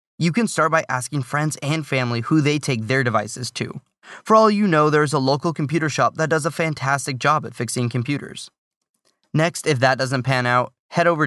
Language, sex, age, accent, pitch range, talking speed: English, male, 20-39, American, 120-160 Hz, 215 wpm